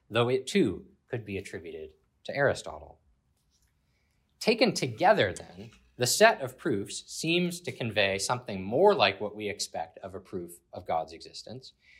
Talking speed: 150 wpm